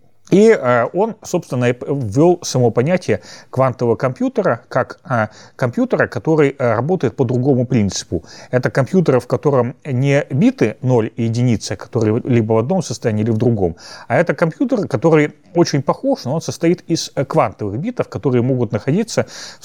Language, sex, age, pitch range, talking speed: Russian, male, 30-49, 120-165 Hz, 145 wpm